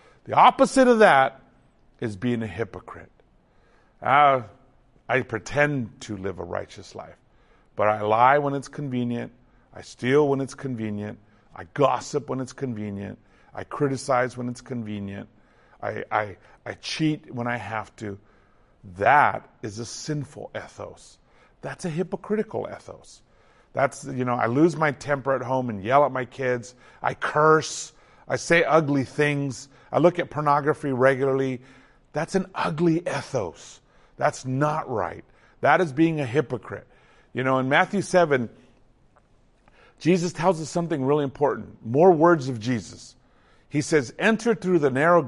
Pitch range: 120-155 Hz